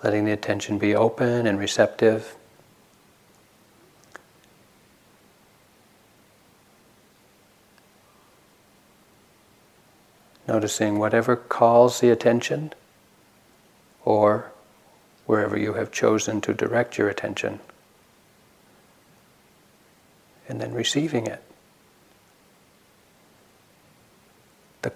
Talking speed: 65 wpm